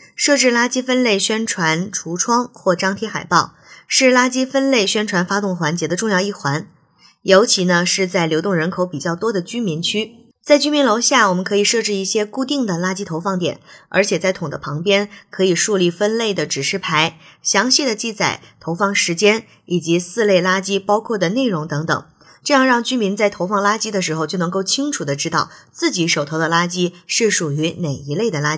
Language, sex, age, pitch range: Chinese, female, 20-39, 170-230 Hz